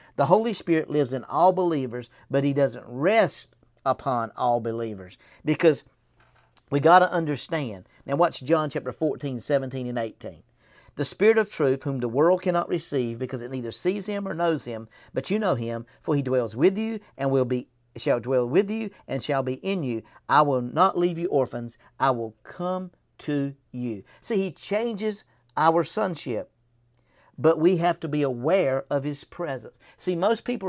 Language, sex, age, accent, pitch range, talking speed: English, male, 50-69, American, 130-175 Hz, 180 wpm